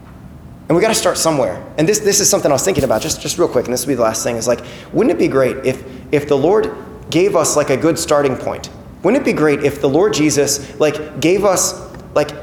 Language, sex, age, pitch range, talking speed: English, male, 30-49, 135-190 Hz, 265 wpm